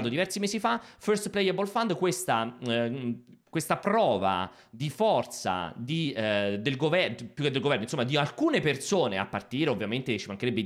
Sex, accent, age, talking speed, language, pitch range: male, native, 30-49, 165 wpm, Italian, 115-175 Hz